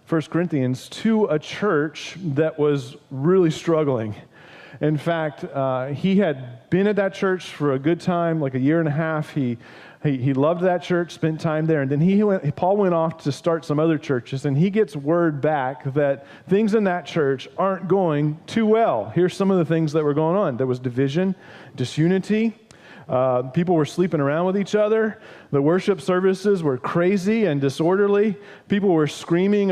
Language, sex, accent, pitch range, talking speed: English, male, American, 145-180 Hz, 190 wpm